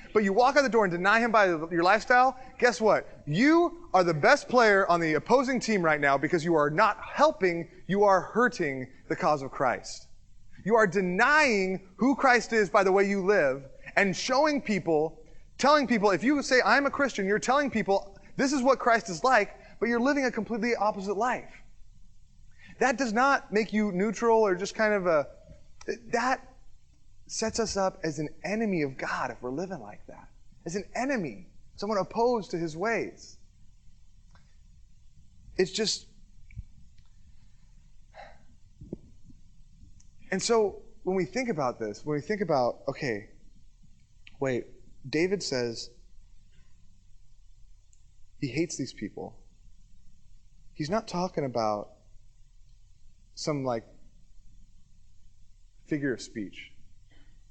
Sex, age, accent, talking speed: male, 20-39, American, 145 wpm